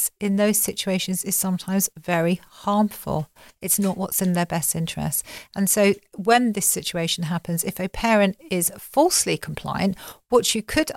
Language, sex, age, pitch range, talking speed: English, female, 40-59, 175-220 Hz, 160 wpm